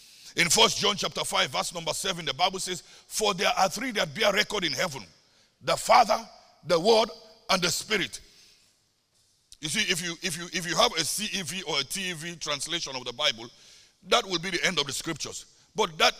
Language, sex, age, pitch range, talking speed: English, male, 50-69, 175-220 Hz, 205 wpm